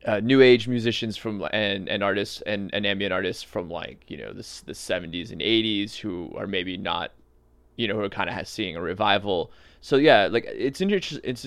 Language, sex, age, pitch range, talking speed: English, male, 20-39, 85-115 Hz, 205 wpm